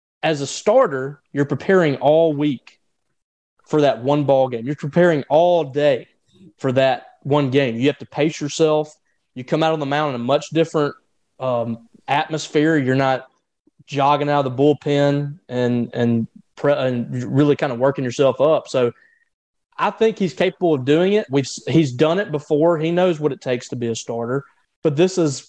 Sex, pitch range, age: male, 130-155 Hz, 20-39